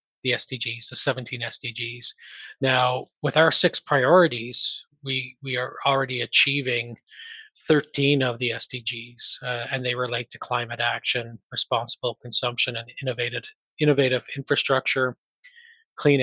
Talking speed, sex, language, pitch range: 120 wpm, male, English, 120-135 Hz